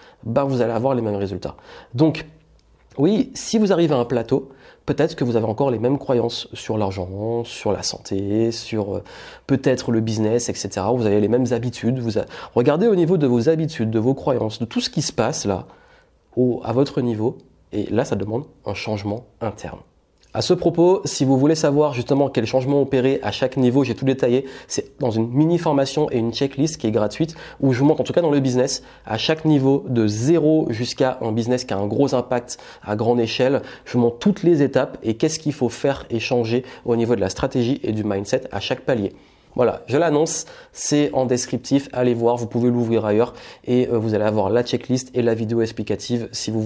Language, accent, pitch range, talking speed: French, French, 115-140 Hz, 215 wpm